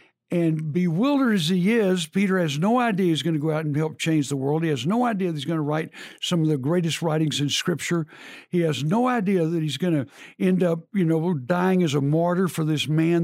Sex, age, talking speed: male, 60-79, 245 wpm